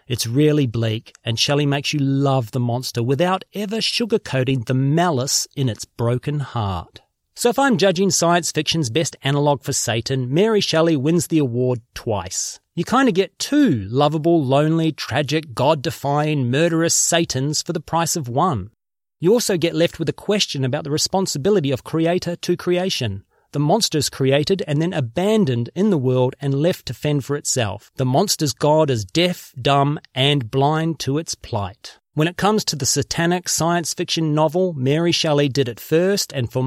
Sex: male